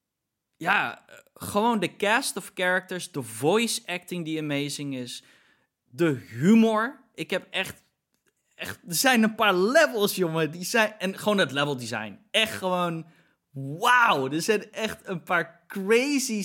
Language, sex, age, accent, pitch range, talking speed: Dutch, male, 20-39, Dutch, 135-185 Hz, 145 wpm